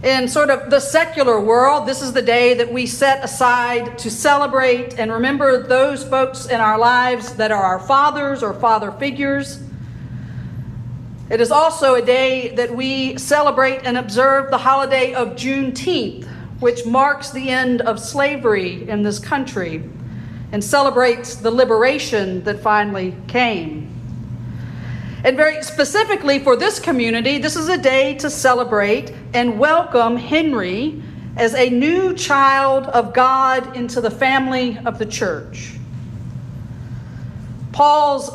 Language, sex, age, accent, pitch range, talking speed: English, female, 50-69, American, 225-280 Hz, 140 wpm